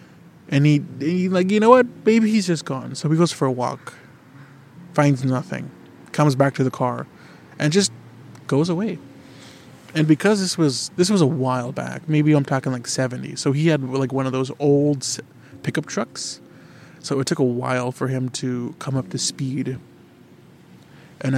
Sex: male